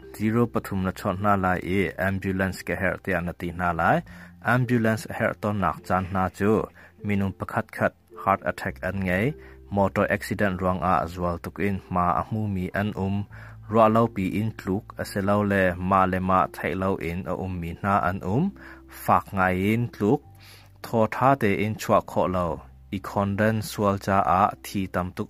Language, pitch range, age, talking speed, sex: English, 90-105 Hz, 20-39, 50 wpm, male